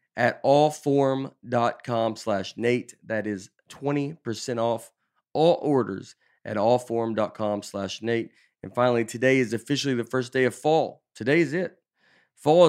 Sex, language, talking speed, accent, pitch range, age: male, English, 130 wpm, American, 110-140 Hz, 30-49